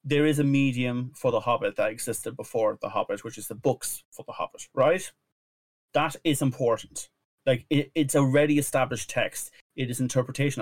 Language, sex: English, male